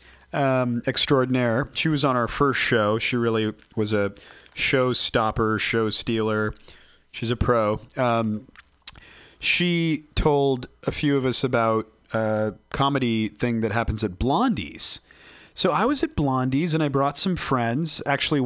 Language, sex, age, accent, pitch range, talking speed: English, male, 40-59, American, 110-135 Hz, 145 wpm